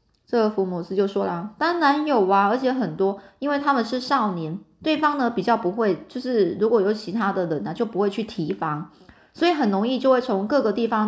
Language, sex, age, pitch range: Chinese, female, 20-39, 200-265 Hz